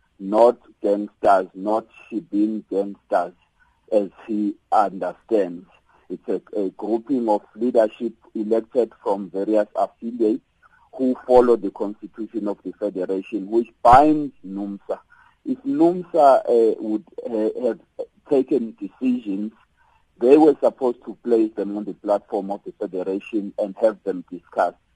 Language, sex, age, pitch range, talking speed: English, male, 50-69, 100-125 Hz, 125 wpm